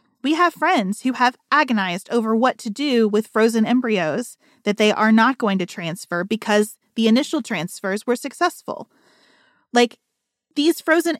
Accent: American